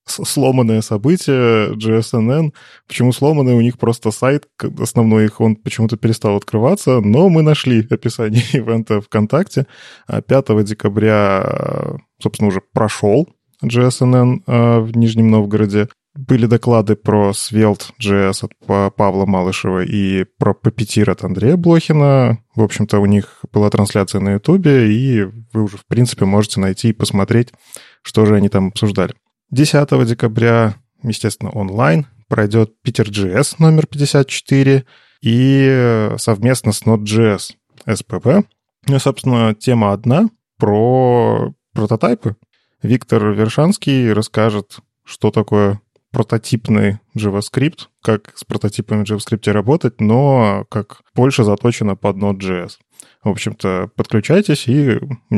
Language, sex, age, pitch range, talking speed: Russian, male, 20-39, 105-130 Hz, 120 wpm